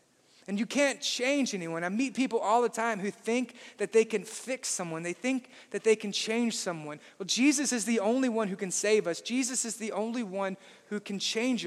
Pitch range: 200-250 Hz